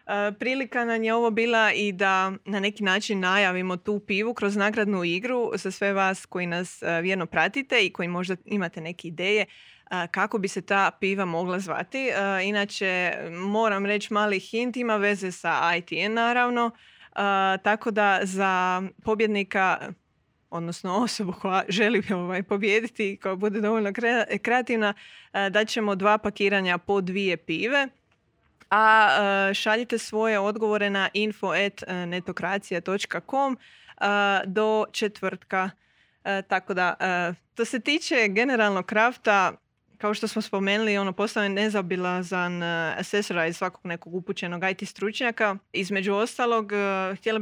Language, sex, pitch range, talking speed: Croatian, female, 185-215 Hz, 130 wpm